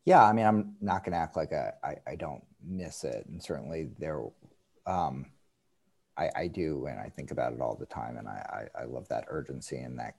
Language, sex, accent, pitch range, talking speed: English, male, American, 85-110 Hz, 225 wpm